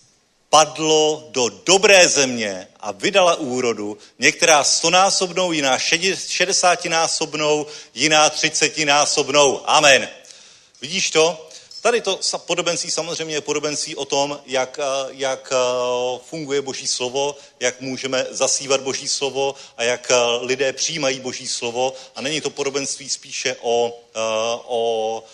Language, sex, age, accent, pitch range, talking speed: Czech, male, 40-59, native, 120-155 Hz, 110 wpm